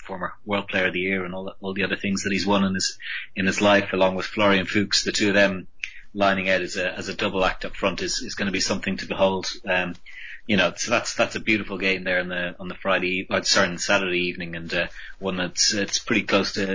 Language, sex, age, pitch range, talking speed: English, male, 30-49, 90-105 Hz, 265 wpm